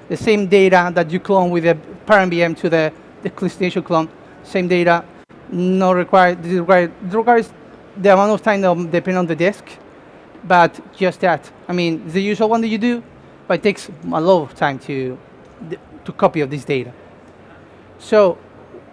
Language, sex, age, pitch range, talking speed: English, male, 30-49, 170-210 Hz, 175 wpm